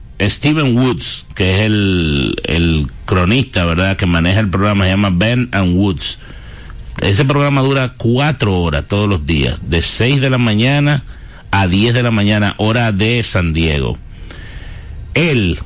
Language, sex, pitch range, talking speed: Spanish, male, 95-120 Hz, 155 wpm